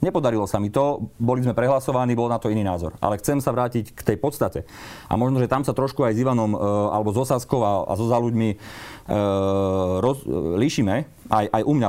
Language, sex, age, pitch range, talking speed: Slovak, male, 30-49, 100-125 Hz, 215 wpm